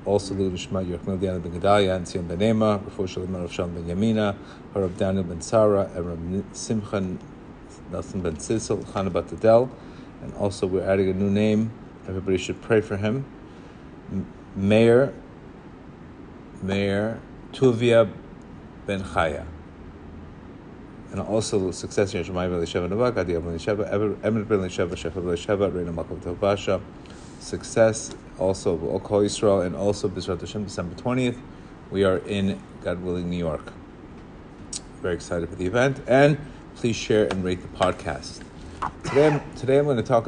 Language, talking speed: English, 145 wpm